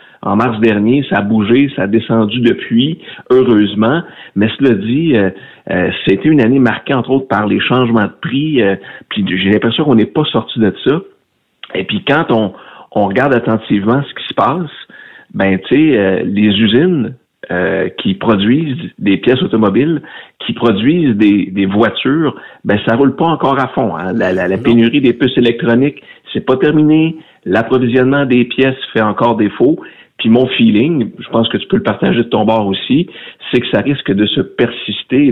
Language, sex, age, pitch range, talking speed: French, male, 60-79, 105-135 Hz, 185 wpm